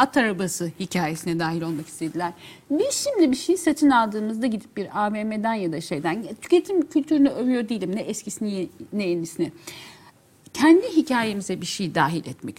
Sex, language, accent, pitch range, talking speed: female, Turkish, native, 170-250 Hz, 155 wpm